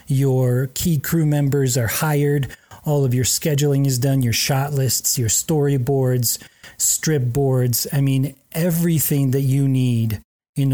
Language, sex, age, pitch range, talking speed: English, male, 30-49, 125-155 Hz, 145 wpm